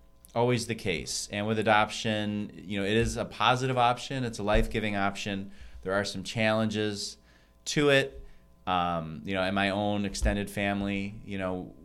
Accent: American